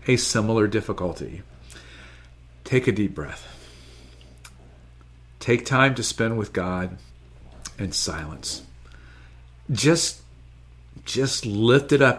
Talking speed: 100 wpm